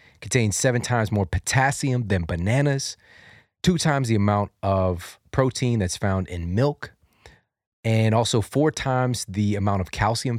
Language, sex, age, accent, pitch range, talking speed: English, male, 30-49, American, 95-125 Hz, 145 wpm